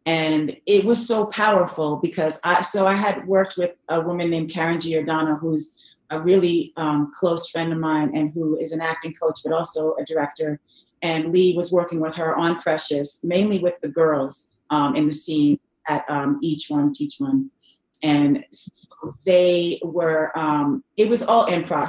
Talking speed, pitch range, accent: 180 wpm, 160-200 Hz, American